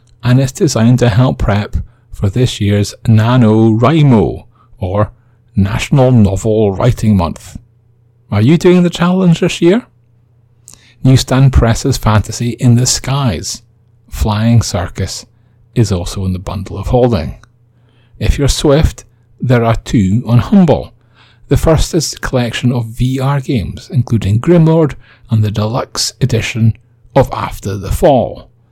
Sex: male